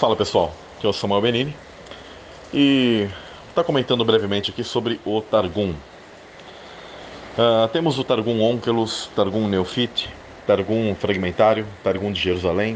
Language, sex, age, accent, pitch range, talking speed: Portuguese, male, 20-39, Brazilian, 95-120 Hz, 130 wpm